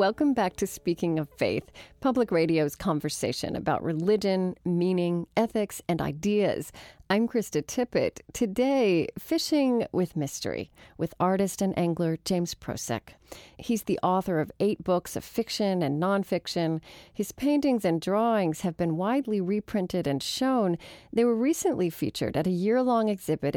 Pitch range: 165-225 Hz